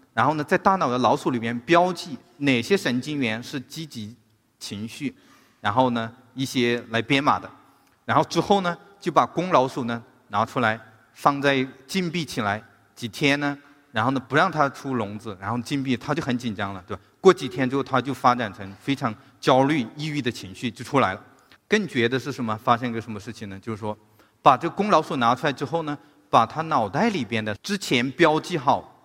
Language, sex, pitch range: Chinese, male, 115-150 Hz